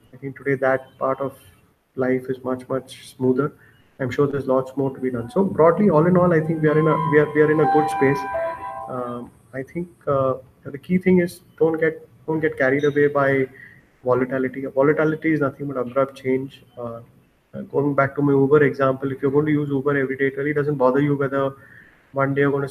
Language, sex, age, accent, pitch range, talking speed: English, male, 30-49, Indian, 130-145 Hz, 225 wpm